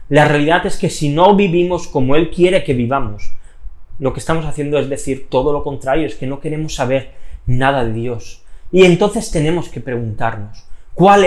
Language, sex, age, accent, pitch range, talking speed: Spanish, male, 30-49, Spanish, 110-155 Hz, 185 wpm